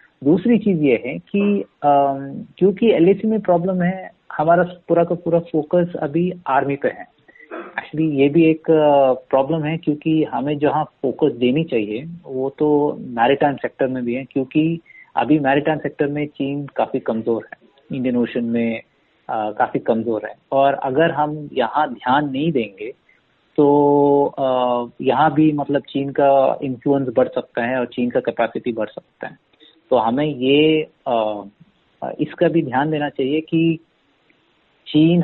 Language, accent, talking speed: Hindi, native, 150 wpm